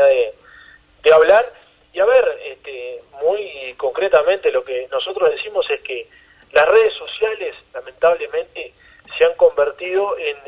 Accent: Argentinian